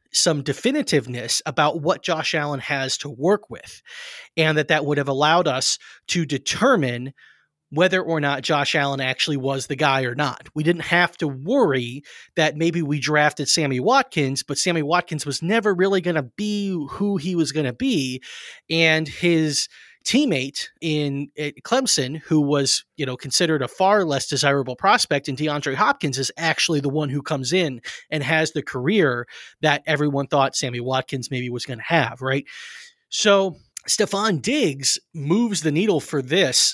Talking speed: 170 wpm